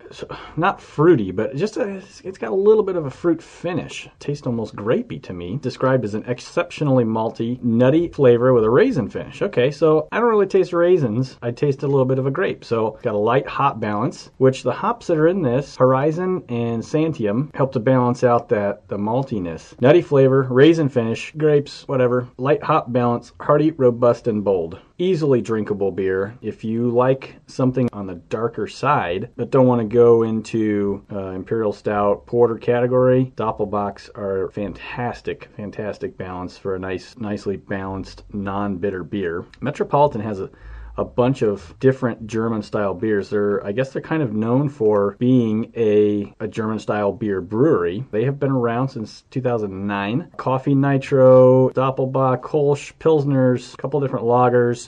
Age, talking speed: 30-49, 170 wpm